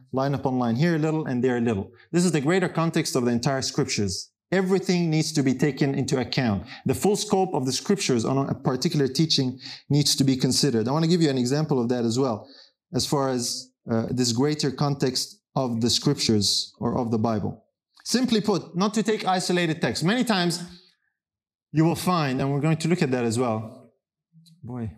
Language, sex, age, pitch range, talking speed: English, male, 30-49, 125-175 Hz, 205 wpm